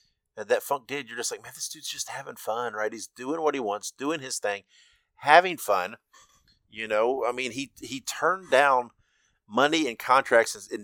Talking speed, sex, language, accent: 195 wpm, male, English, American